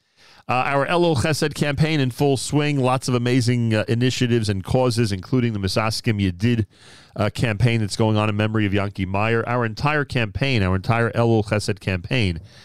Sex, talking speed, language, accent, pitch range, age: male, 175 wpm, English, American, 95-115 Hz, 40-59